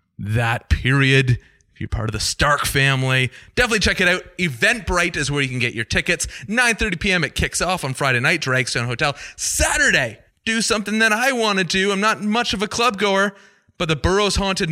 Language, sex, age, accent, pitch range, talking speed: English, male, 30-49, American, 135-195 Hz, 210 wpm